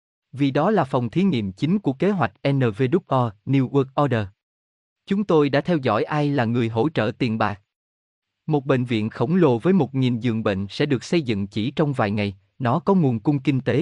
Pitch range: 110-160 Hz